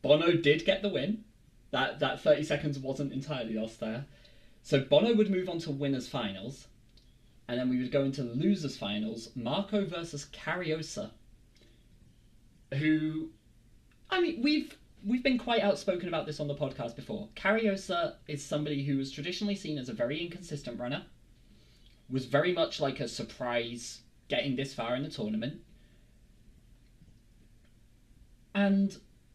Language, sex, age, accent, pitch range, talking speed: English, male, 30-49, British, 125-180 Hz, 145 wpm